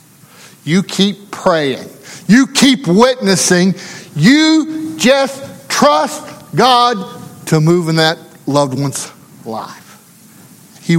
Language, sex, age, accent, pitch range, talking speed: English, male, 50-69, American, 155-225 Hz, 100 wpm